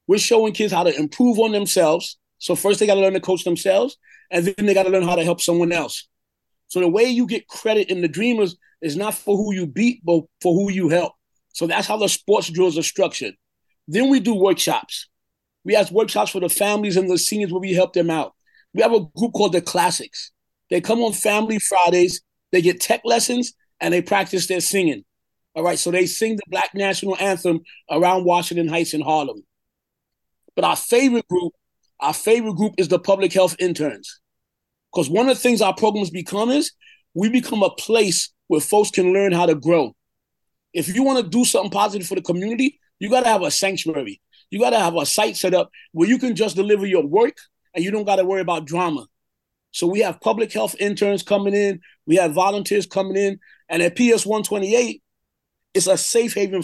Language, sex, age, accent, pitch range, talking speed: English, male, 30-49, American, 175-220 Hz, 210 wpm